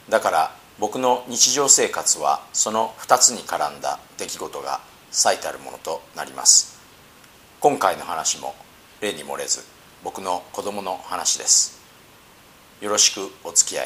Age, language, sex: 50-69, Japanese, male